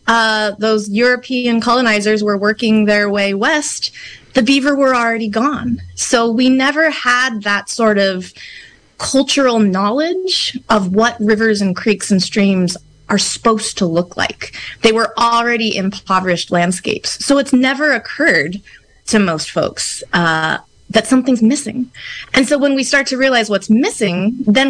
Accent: American